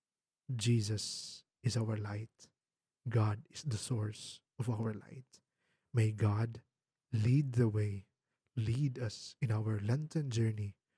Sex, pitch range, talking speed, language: male, 110-130 Hz, 120 wpm, Filipino